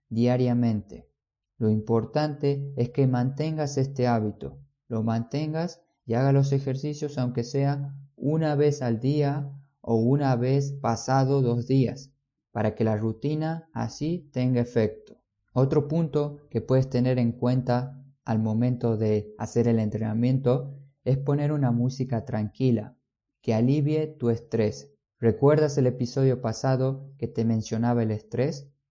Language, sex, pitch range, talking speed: Spanish, male, 115-140 Hz, 135 wpm